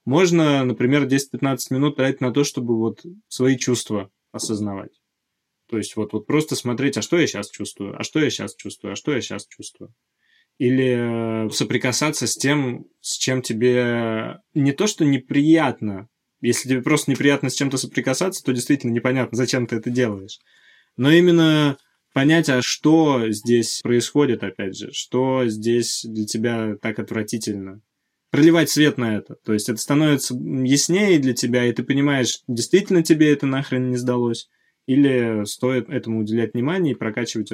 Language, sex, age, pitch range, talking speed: Russian, male, 20-39, 115-140 Hz, 160 wpm